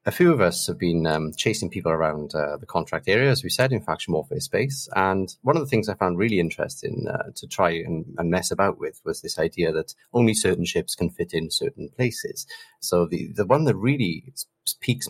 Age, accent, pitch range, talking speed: 30-49, British, 85-130 Hz, 225 wpm